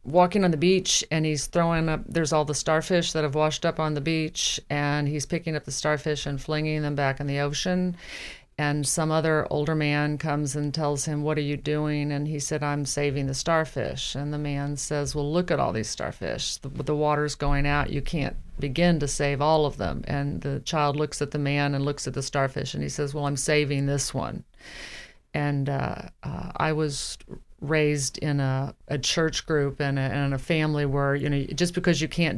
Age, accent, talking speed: 40-59, American, 220 wpm